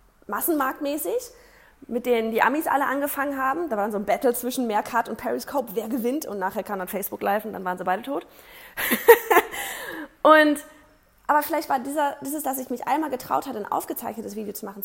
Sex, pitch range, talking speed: female, 215-300 Hz, 195 wpm